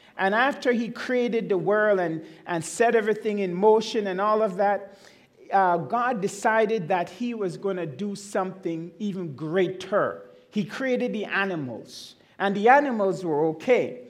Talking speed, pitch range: 160 wpm, 185-240 Hz